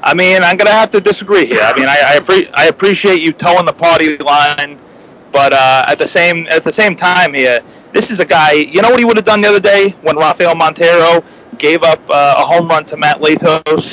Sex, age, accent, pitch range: male, 30-49, American, 150-200 Hz